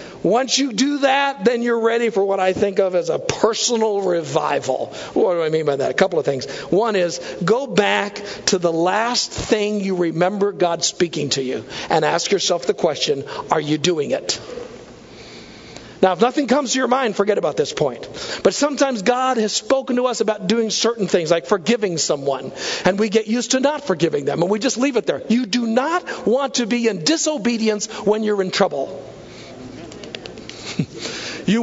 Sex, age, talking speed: male, 50-69, 190 wpm